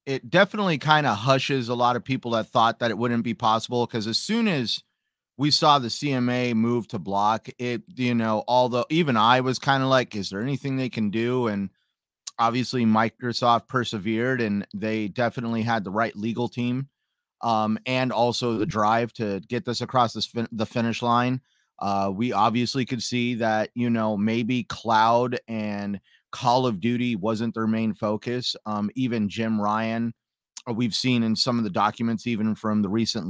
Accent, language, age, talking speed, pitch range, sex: American, English, 30-49, 180 wpm, 105-120 Hz, male